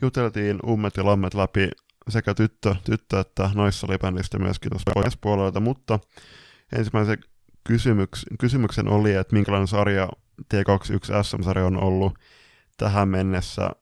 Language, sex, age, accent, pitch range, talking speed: Finnish, male, 20-39, native, 95-105 Hz, 135 wpm